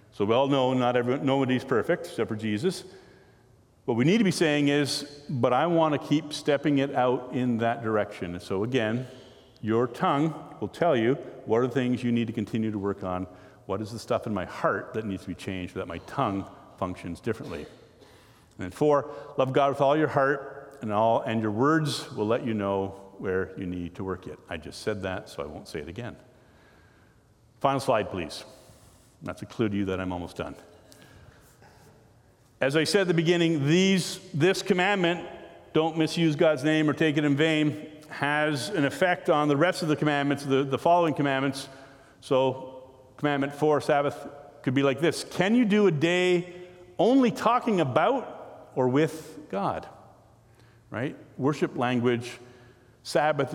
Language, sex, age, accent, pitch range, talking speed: English, male, 50-69, American, 115-155 Hz, 180 wpm